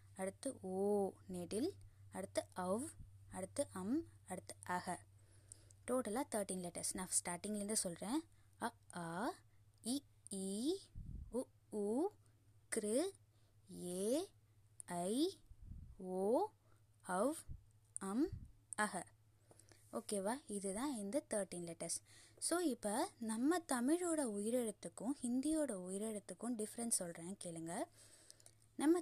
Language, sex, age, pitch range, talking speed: Tamil, female, 20-39, 175-240 Hz, 80 wpm